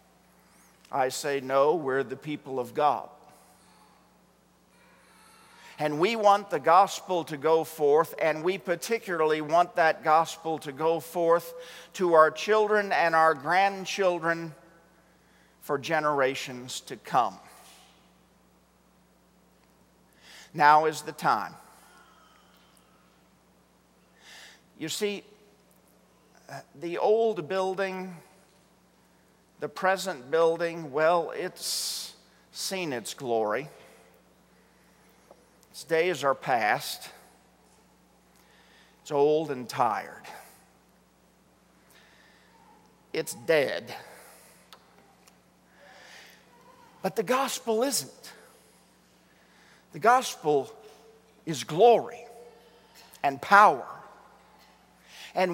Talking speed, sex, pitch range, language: 80 wpm, male, 145-195 Hz, English